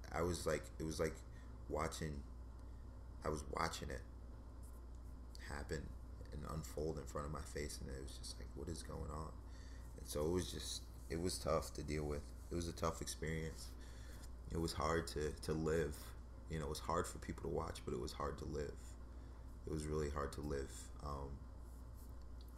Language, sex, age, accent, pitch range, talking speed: English, male, 30-49, American, 65-80 Hz, 190 wpm